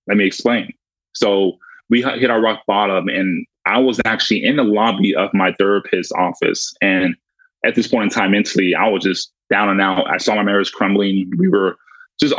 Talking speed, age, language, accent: 200 wpm, 20-39, English, American